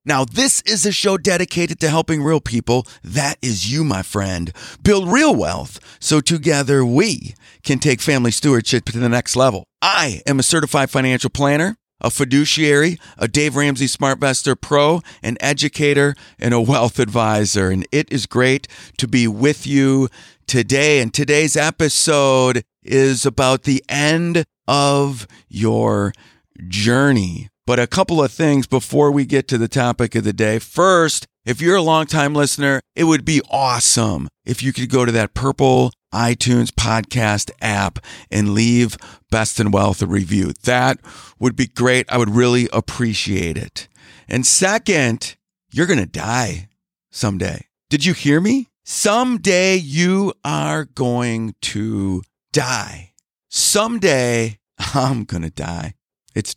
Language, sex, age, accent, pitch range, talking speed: English, male, 50-69, American, 115-155 Hz, 150 wpm